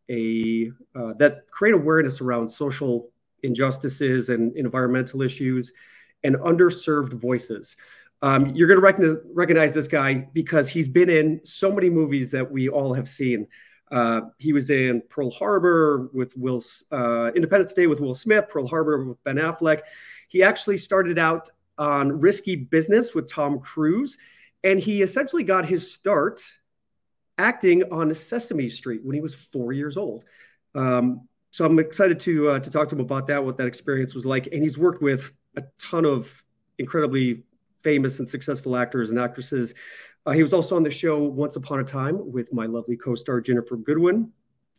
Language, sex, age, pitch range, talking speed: English, male, 30-49, 130-165 Hz, 170 wpm